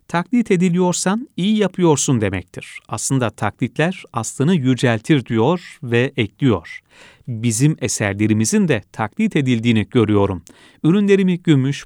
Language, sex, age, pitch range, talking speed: Turkish, male, 40-59, 110-155 Hz, 100 wpm